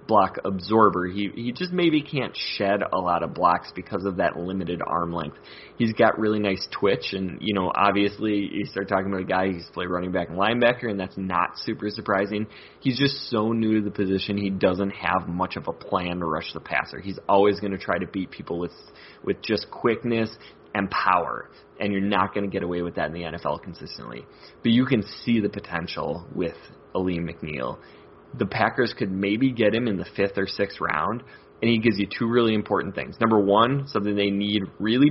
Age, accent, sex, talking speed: 20-39, American, male, 210 wpm